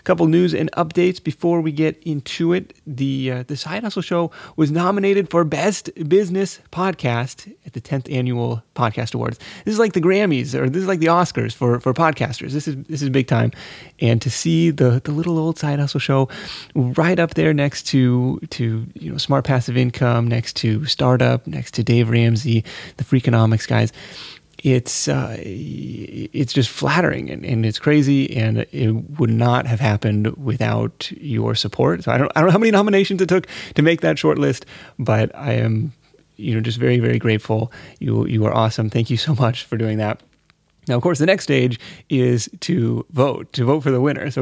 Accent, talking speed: American, 200 wpm